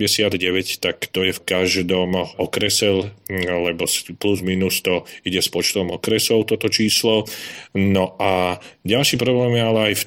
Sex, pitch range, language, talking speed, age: male, 95-105 Hz, Slovak, 150 wpm, 40-59